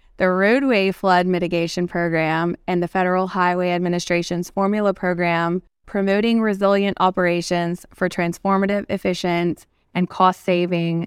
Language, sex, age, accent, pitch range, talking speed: English, female, 20-39, American, 180-205 Hz, 110 wpm